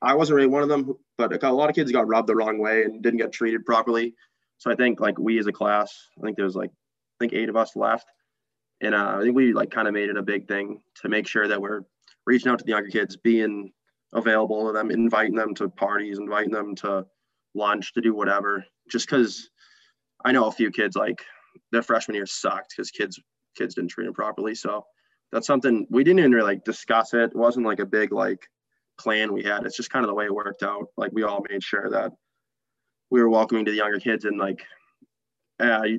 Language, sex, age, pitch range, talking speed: English, male, 20-39, 105-115 Hz, 240 wpm